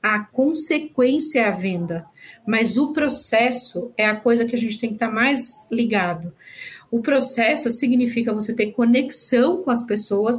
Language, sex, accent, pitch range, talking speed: Portuguese, female, Brazilian, 220-280 Hz, 165 wpm